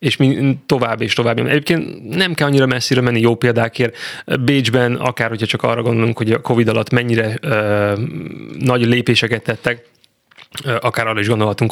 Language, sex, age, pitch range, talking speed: Hungarian, male, 20-39, 110-125 Hz, 165 wpm